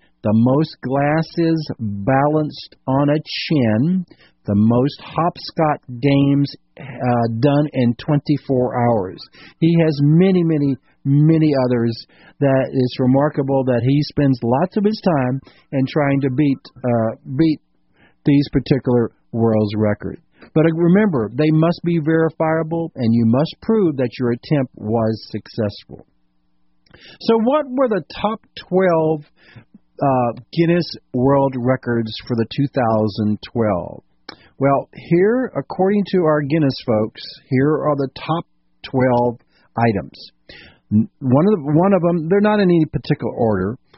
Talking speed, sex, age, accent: 130 wpm, male, 50-69, American